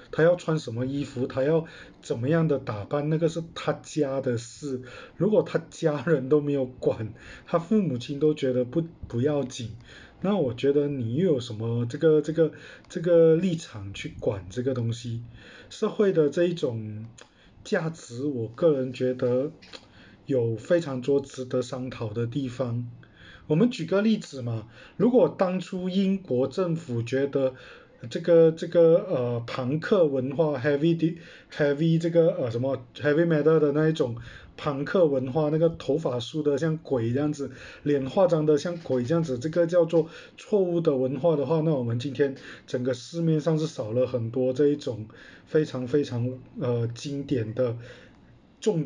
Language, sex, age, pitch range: Chinese, male, 20-39, 125-160 Hz